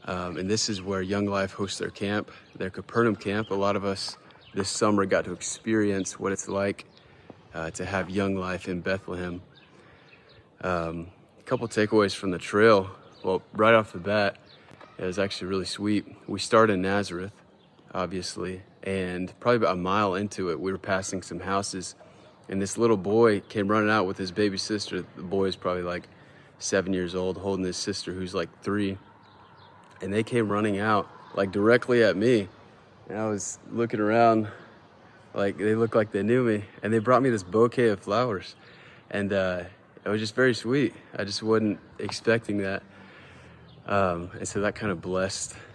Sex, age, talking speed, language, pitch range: male, 30-49, 180 wpm, English, 95-110 Hz